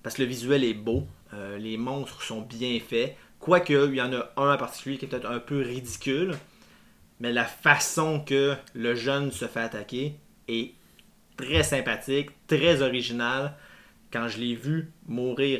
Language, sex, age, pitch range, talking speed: French, male, 30-49, 115-140 Hz, 175 wpm